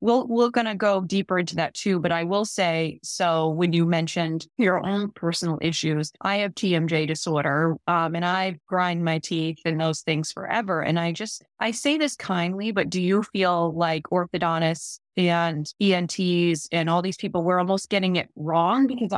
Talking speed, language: 185 wpm, English